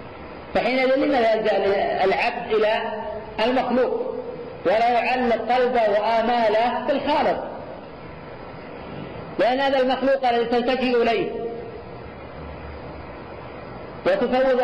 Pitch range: 210-255 Hz